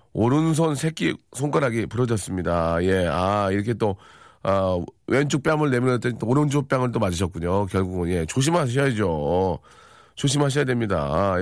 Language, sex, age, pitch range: Korean, male, 40-59, 105-145 Hz